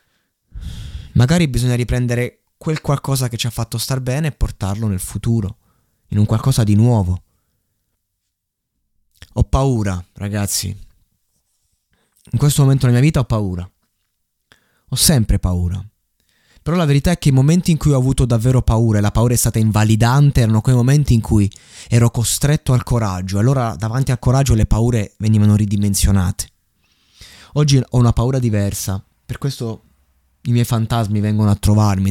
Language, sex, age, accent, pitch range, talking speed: Italian, male, 20-39, native, 95-120 Hz, 155 wpm